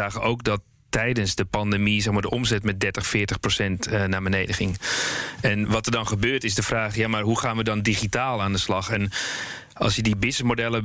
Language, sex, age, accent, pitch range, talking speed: Dutch, male, 30-49, Dutch, 100-115 Hz, 200 wpm